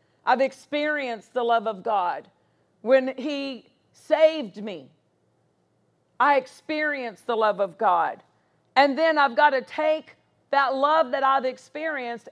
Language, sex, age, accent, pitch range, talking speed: English, female, 50-69, American, 235-290 Hz, 130 wpm